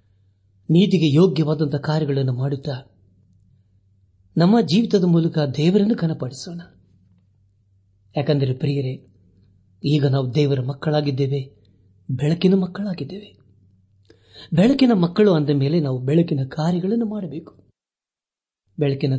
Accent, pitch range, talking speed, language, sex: native, 100-160 Hz, 80 wpm, Kannada, male